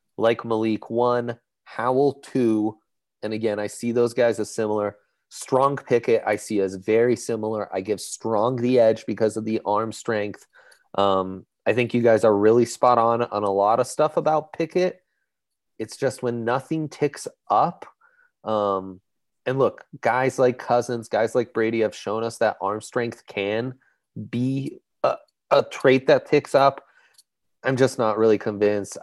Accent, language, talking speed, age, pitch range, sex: American, English, 165 wpm, 30-49, 105-120 Hz, male